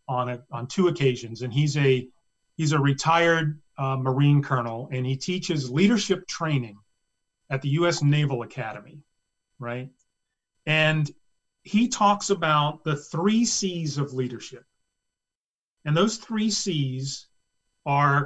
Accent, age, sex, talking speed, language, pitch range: American, 40-59, male, 130 wpm, English, 135-185 Hz